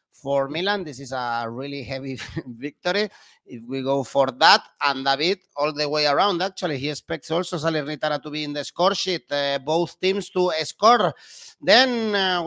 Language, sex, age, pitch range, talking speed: English, male, 30-49, 160-210 Hz, 180 wpm